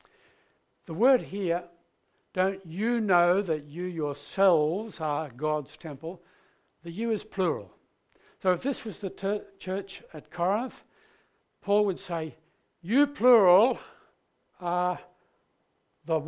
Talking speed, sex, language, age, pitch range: 115 wpm, male, English, 60-79, 160-220 Hz